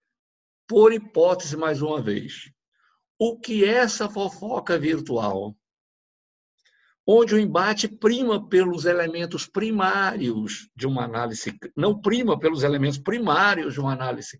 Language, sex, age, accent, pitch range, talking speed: Portuguese, male, 60-79, Brazilian, 140-190 Hz, 115 wpm